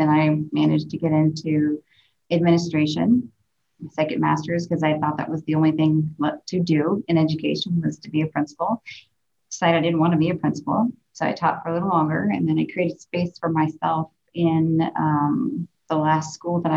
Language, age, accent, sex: English, 30-49, American, female